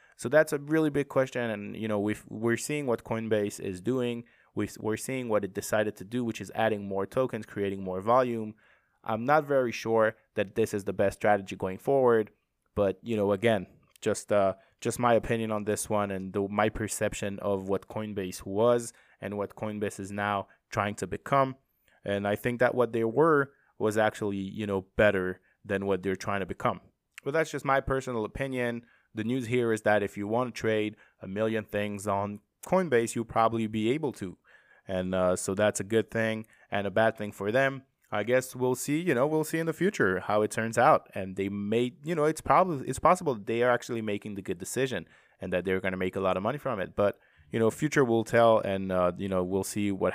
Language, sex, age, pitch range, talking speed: English, male, 20-39, 100-125 Hz, 220 wpm